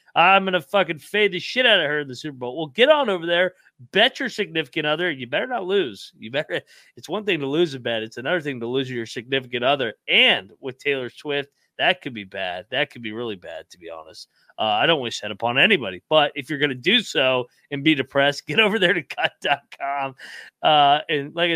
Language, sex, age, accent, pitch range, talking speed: English, male, 30-49, American, 125-160 Hz, 235 wpm